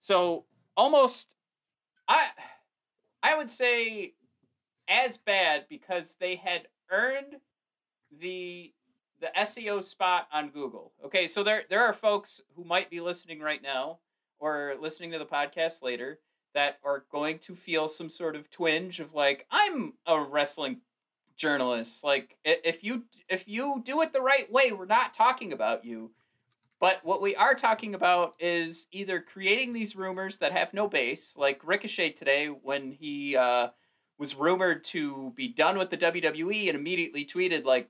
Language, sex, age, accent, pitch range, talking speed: English, male, 30-49, American, 150-215 Hz, 155 wpm